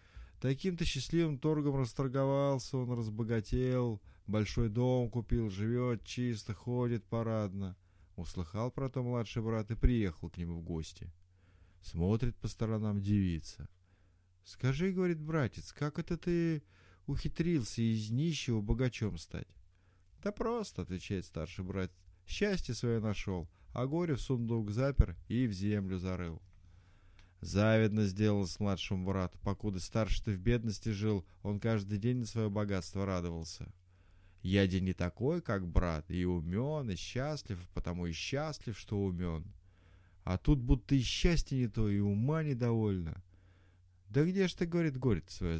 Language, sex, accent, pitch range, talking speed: Russian, male, native, 90-125 Hz, 150 wpm